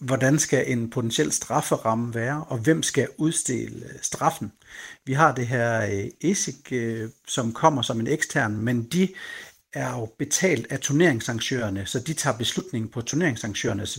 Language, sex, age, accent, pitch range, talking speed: Danish, male, 60-79, native, 120-155 Hz, 145 wpm